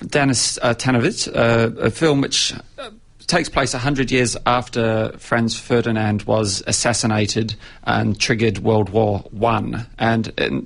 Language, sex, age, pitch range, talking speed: English, male, 40-59, 110-125 Hz, 135 wpm